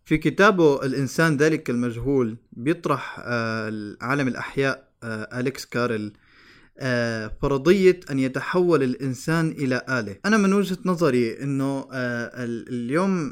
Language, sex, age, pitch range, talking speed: Arabic, male, 20-39, 125-175 Hz, 115 wpm